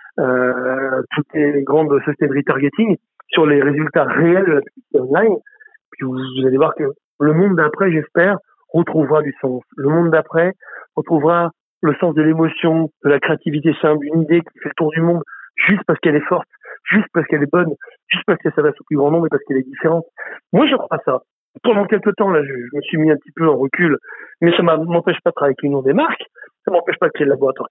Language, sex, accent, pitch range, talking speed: French, male, French, 150-185 Hz, 225 wpm